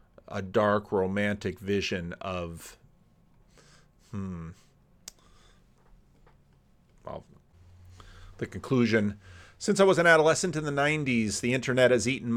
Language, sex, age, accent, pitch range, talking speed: English, male, 40-59, American, 105-130 Hz, 100 wpm